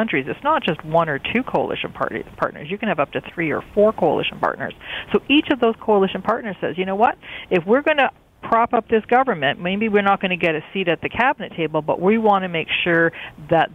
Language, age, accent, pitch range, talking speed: English, 40-59, American, 145-190 Hz, 250 wpm